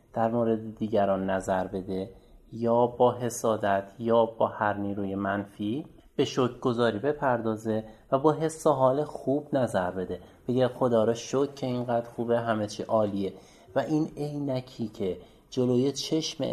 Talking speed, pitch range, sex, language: 140 wpm, 105-130 Hz, male, Persian